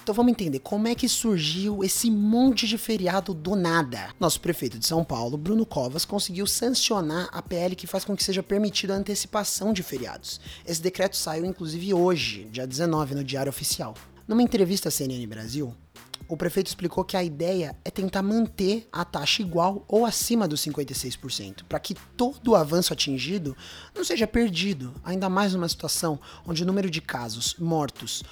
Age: 20-39